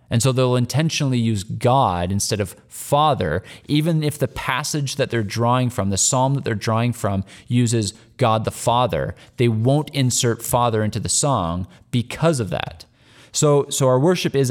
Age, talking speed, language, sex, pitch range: 20-39, 175 wpm, English, male, 105-135 Hz